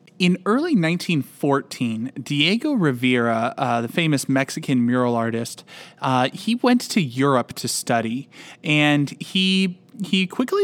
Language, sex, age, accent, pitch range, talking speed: English, male, 20-39, American, 135-185 Hz, 125 wpm